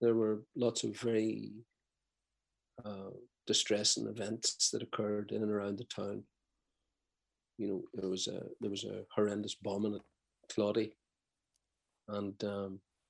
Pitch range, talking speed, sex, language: 100-110 Hz, 135 wpm, male, English